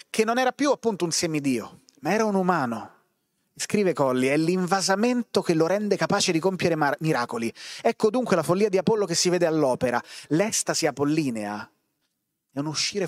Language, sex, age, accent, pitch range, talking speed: Italian, male, 30-49, native, 140-195 Hz, 175 wpm